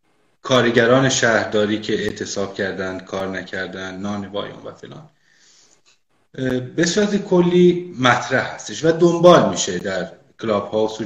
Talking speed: 110 wpm